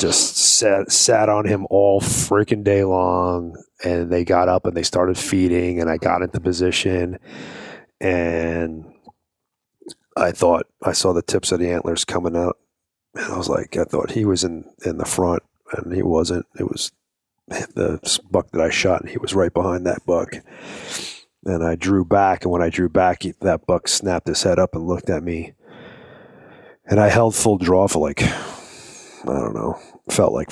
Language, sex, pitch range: English, male, 80-95 Hz